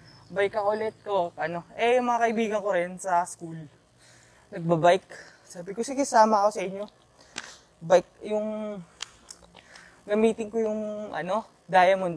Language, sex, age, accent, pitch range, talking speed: Filipino, female, 20-39, native, 175-215 Hz, 135 wpm